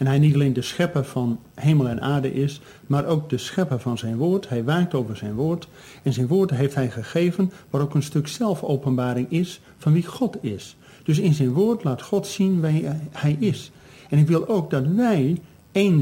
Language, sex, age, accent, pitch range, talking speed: Dutch, male, 50-69, Dutch, 125-170 Hz, 210 wpm